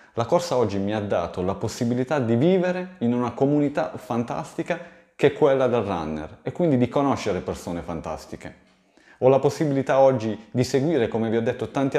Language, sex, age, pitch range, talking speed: Italian, male, 30-49, 115-160 Hz, 180 wpm